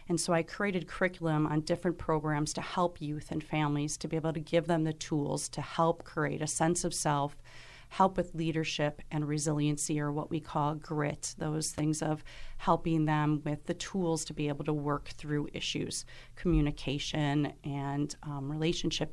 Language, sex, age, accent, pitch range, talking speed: English, female, 40-59, American, 150-165 Hz, 180 wpm